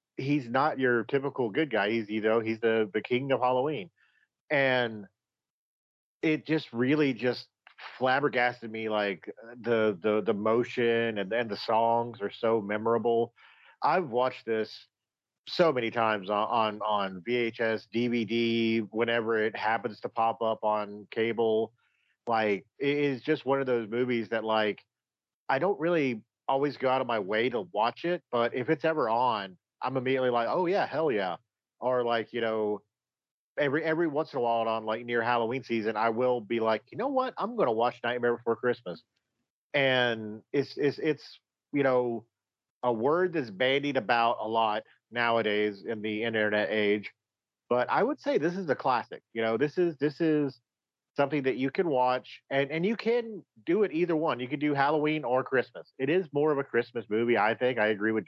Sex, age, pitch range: male, 40-59, 110-135 Hz